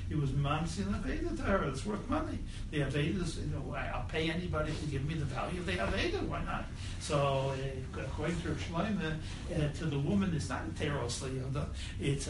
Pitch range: 95-140 Hz